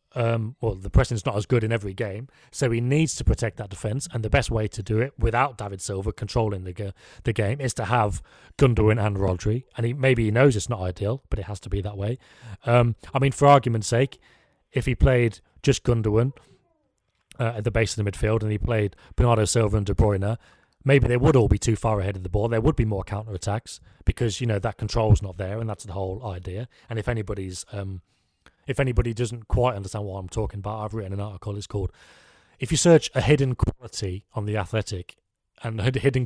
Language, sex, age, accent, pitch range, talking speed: English, male, 30-49, British, 105-130 Hz, 225 wpm